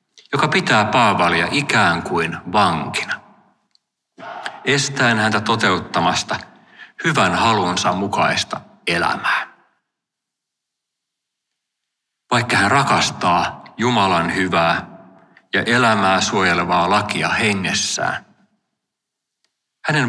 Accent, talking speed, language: native, 70 wpm, Finnish